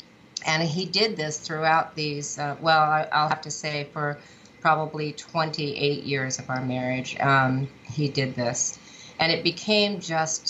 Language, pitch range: English, 135-155 Hz